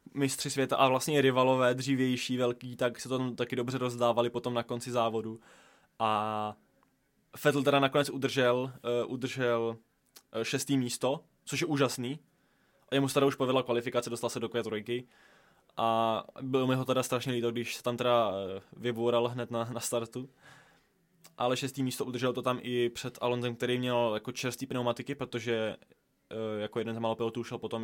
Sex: male